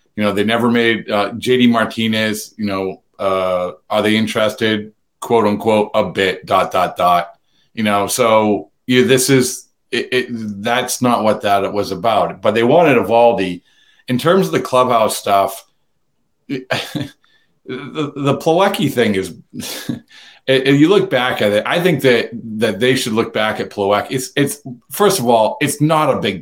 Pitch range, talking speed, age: 105-140 Hz, 170 wpm, 40-59